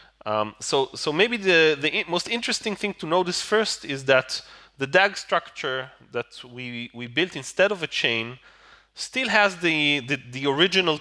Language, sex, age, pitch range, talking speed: English, male, 30-49, 135-205 Hz, 175 wpm